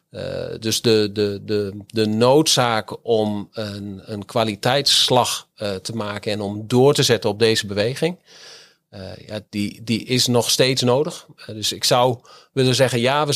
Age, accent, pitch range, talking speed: 40-59, Dutch, 110-125 Hz, 155 wpm